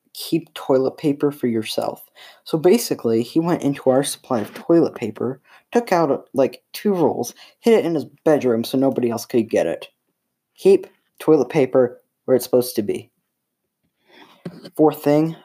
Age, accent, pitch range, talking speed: 10-29, American, 120-145 Hz, 160 wpm